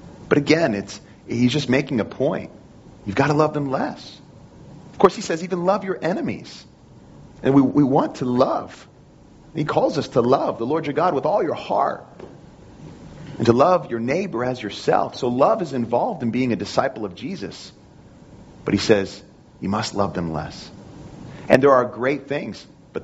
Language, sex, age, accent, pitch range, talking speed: English, male, 40-59, American, 110-140 Hz, 185 wpm